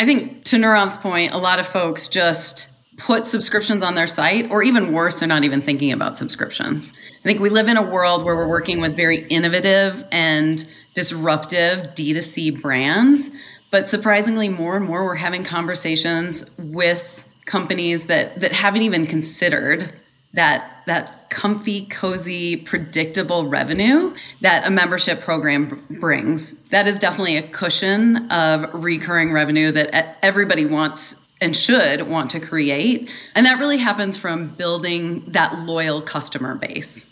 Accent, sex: American, female